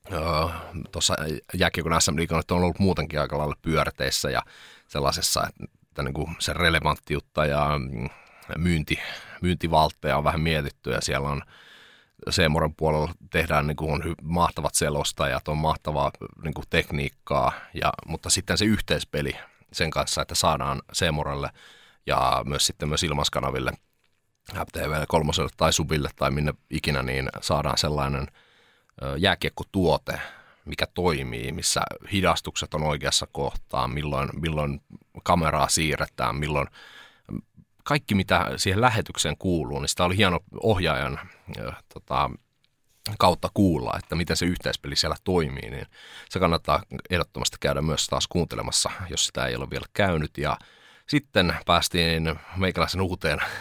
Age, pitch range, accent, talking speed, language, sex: 30-49, 70-90 Hz, native, 125 wpm, Finnish, male